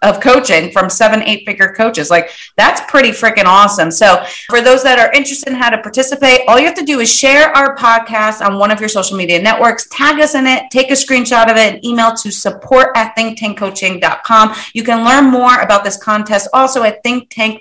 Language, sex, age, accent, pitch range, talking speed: English, female, 30-49, American, 195-260 Hz, 220 wpm